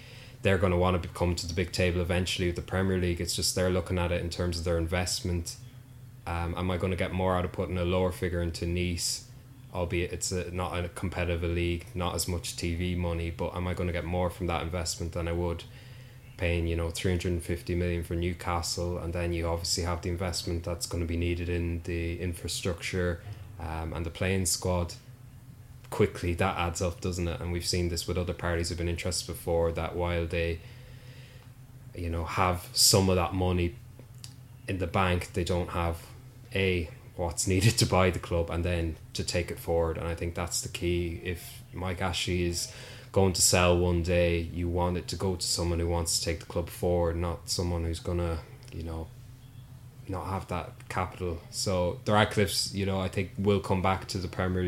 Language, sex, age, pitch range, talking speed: English, male, 20-39, 85-105 Hz, 210 wpm